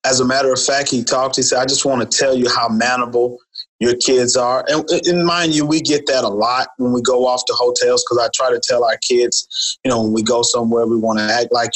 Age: 30-49